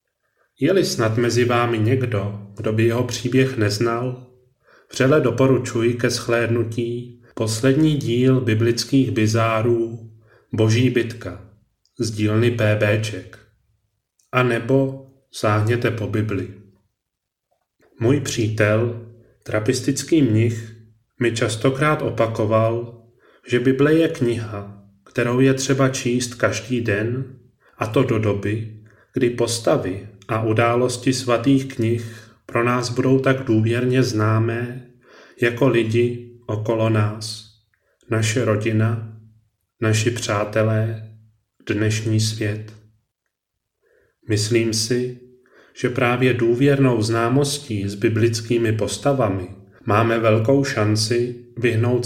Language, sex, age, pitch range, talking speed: Czech, male, 30-49, 110-125 Hz, 95 wpm